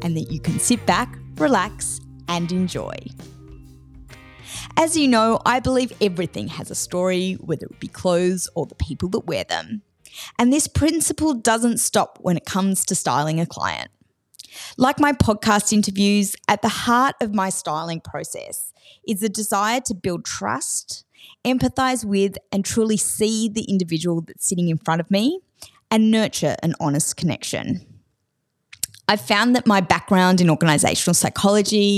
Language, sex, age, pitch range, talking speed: English, female, 20-39, 170-220 Hz, 155 wpm